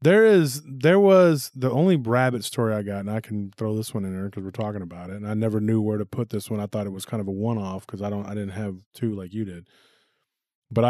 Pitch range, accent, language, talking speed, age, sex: 105-125 Hz, American, English, 280 wpm, 30-49, male